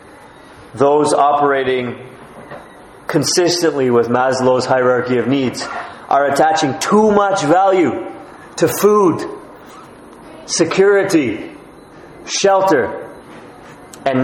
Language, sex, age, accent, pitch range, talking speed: English, male, 30-49, American, 120-155 Hz, 75 wpm